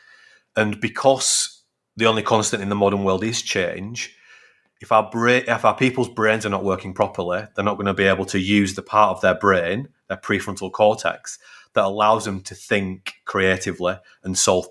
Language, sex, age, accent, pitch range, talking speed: English, male, 30-49, British, 95-120 Hz, 190 wpm